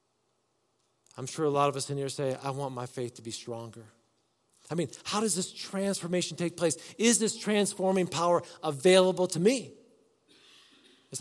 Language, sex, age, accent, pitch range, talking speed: English, male, 50-69, American, 140-215 Hz, 170 wpm